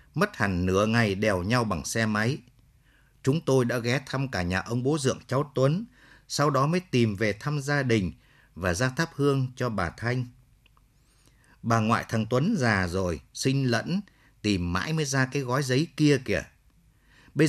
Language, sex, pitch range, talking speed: Vietnamese, male, 115-140 Hz, 185 wpm